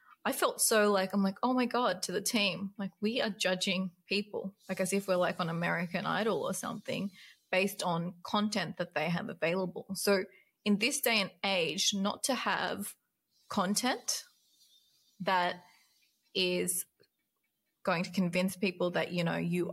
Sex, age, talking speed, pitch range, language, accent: female, 20-39, 165 wpm, 180-210 Hz, English, Australian